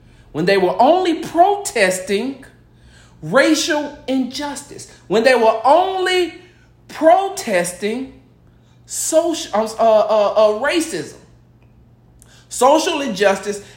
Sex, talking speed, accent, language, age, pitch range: male, 85 wpm, American, English, 40-59, 175-260 Hz